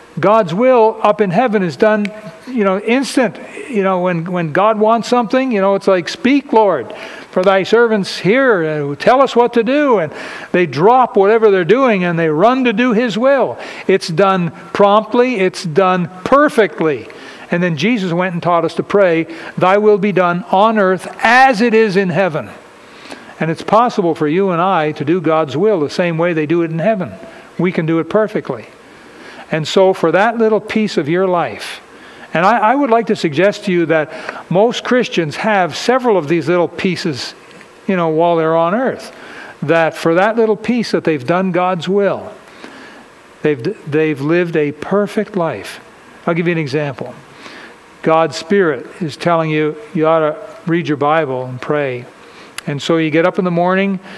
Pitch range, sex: 165-215 Hz, male